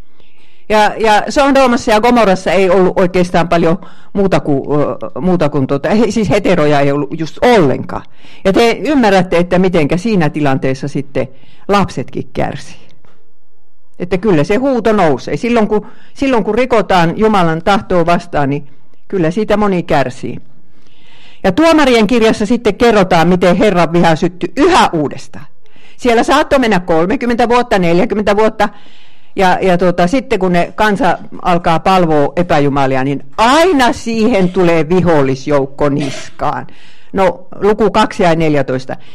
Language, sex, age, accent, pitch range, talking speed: Finnish, female, 50-69, native, 155-220 Hz, 135 wpm